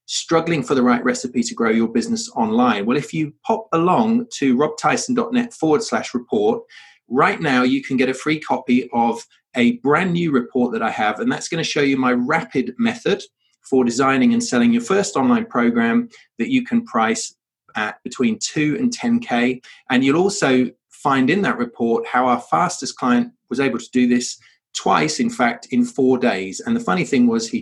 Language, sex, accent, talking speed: English, male, British, 195 wpm